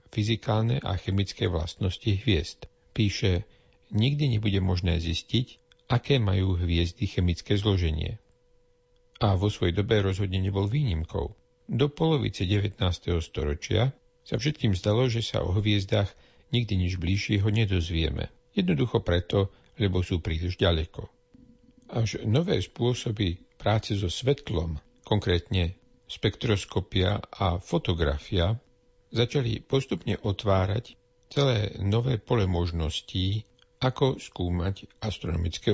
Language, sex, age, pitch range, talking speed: Slovak, male, 50-69, 90-115 Hz, 105 wpm